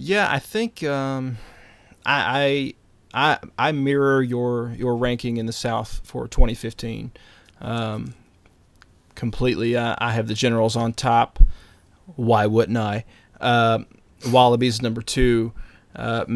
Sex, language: male, English